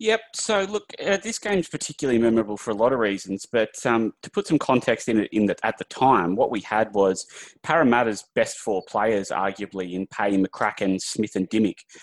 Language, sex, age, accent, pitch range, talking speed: English, male, 20-39, Australian, 95-110 Hz, 205 wpm